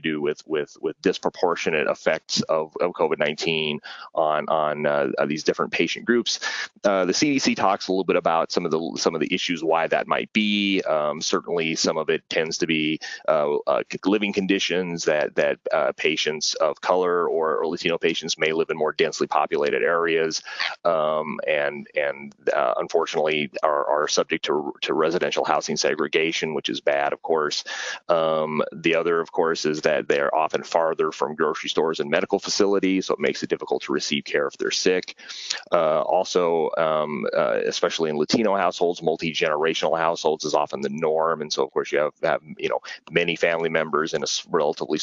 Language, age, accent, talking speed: Italian, 30-49, American, 185 wpm